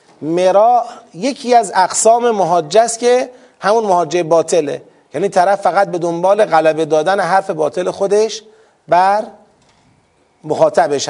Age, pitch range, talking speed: 40-59, 145-185 Hz, 120 wpm